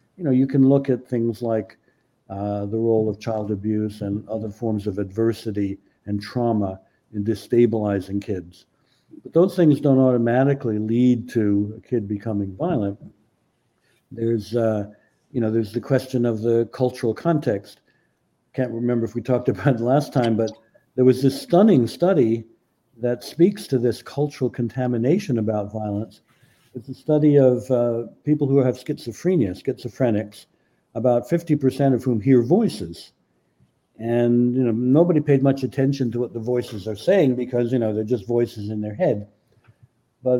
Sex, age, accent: male, 60-79, American